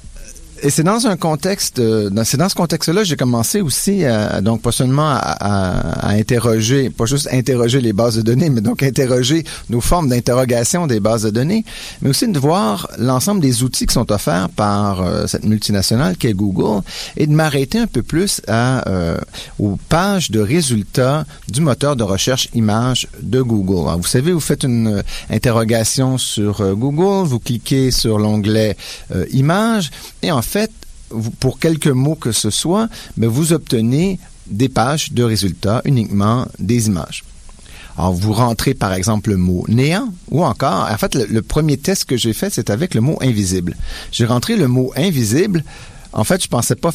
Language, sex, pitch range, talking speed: French, male, 110-145 Hz, 195 wpm